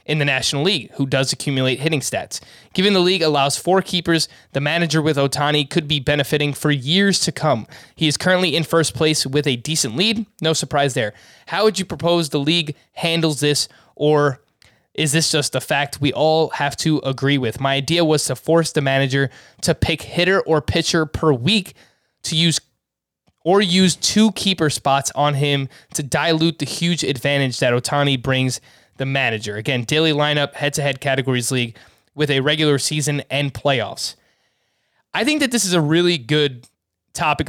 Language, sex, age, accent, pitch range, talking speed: English, male, 20-39, American, 140-165 Hz, 180 wpm